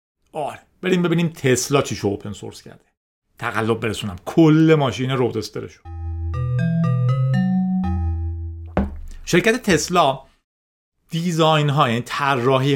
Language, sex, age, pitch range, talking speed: Persian, male, 40-59, 120-180 Hz, 95 wpm